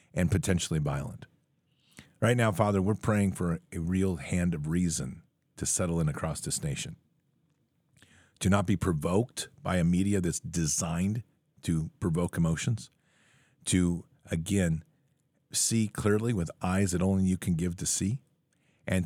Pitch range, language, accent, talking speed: 90-115 Hz, English, American, 145 wpm